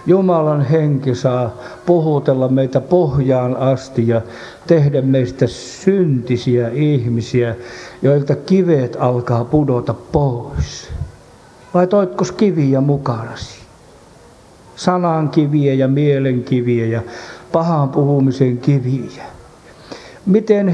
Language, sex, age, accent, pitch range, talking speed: Finnish, male, 50-69, native, 120-150 Hz, 85 wpm